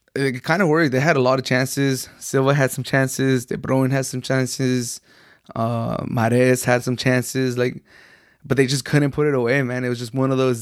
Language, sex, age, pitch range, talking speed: English, male, 20-39, 125-140 Hz, 220 wpm